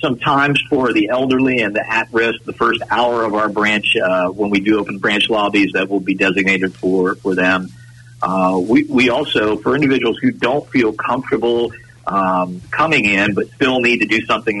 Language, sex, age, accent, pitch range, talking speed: English, male, 40-59, American, 95-120 Hz, 190 wpm